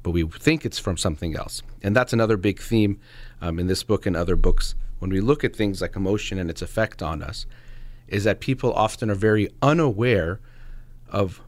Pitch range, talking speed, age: 100-125 Hz, 205 wpm, 40-59